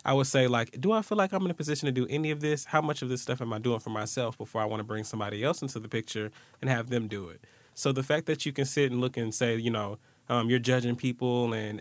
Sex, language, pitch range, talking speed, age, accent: male, English, 115-140 Hz, 305 wpm, 20-39, American